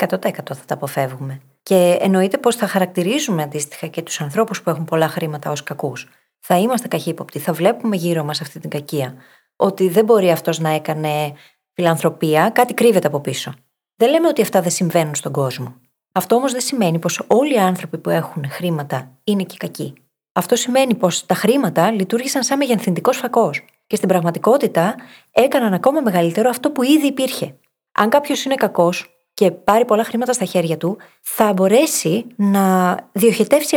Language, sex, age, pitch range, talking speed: Greek, female, 30-49, 165-235 Hz, 170 wpm